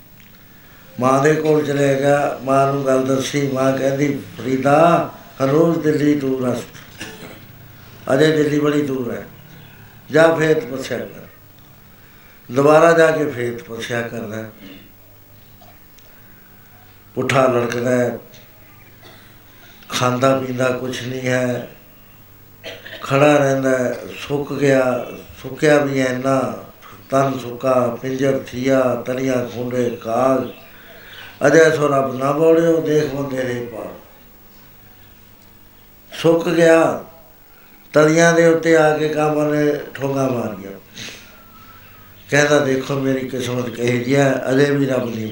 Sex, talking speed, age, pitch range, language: male, 105 wpm, 60-79, 105-140 Hz, Punjabi